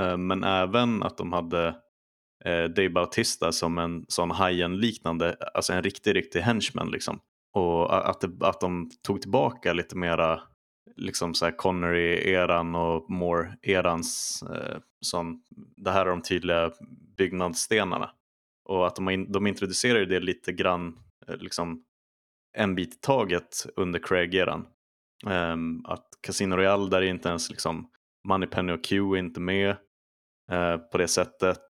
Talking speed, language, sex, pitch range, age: 140 wpm, Swedish, male, 85-95 Hz, 20-39